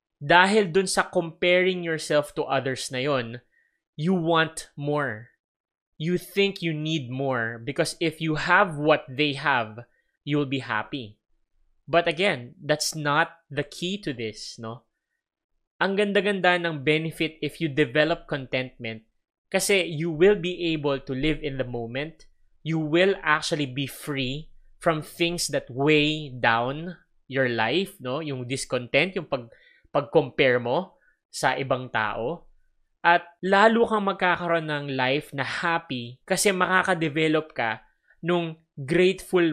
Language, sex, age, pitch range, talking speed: English, male, 20-39, 130-170 Hz, 135 wpm